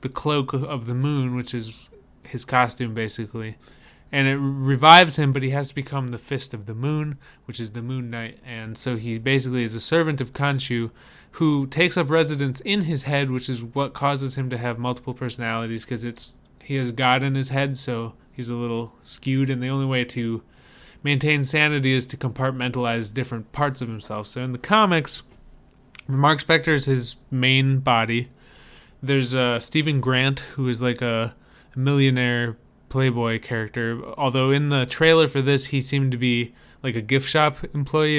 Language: English